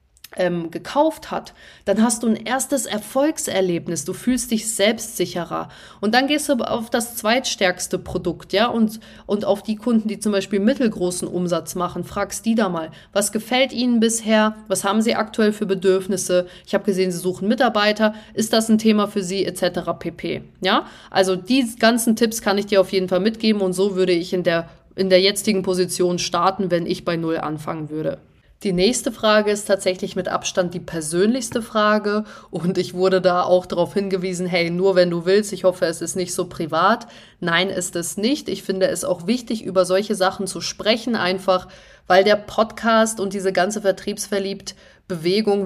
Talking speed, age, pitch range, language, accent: 185 wpm, 20-39, 180-220 Hz, German, German